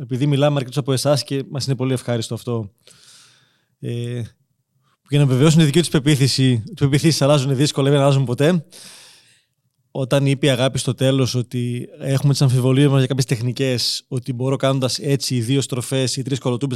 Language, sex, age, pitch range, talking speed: Greek, male, 20-39, 130-160 Hz, 175 wpm